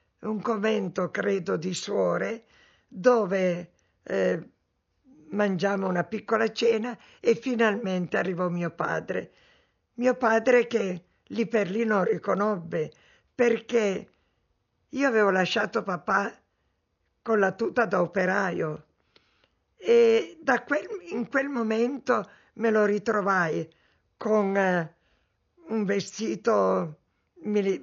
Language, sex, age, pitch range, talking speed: Italian, female, 60-79, 185-230 Hz, 105 wpm